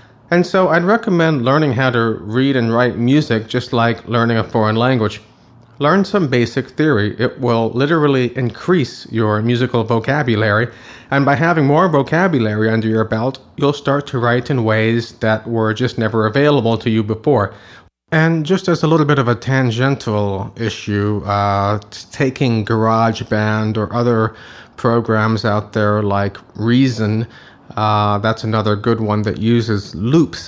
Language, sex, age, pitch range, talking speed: English, male, 30-49, 105-125 Hz, 155 wpm